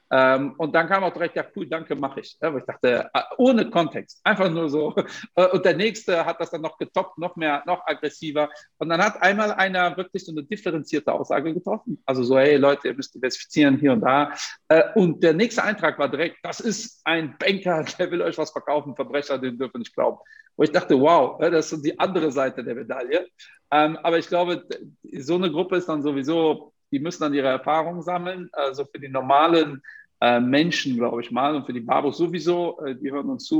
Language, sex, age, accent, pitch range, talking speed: German, male, 50-69, German, 135-180 Hz, 205 wpm